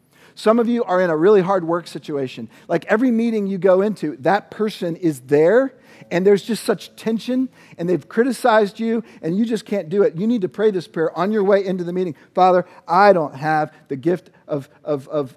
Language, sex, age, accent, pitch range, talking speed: English, male, 50-69, American, 115-175 Hz, 210 wpm